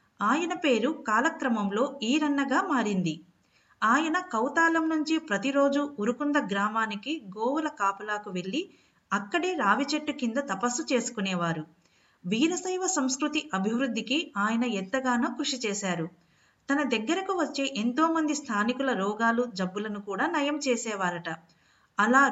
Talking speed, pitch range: 110 wpm, 205-295 Hz